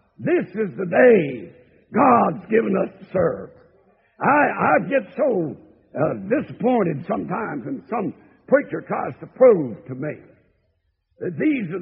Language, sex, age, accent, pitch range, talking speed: English, male, 60-79, American, 210-310 Hz, 135 wpm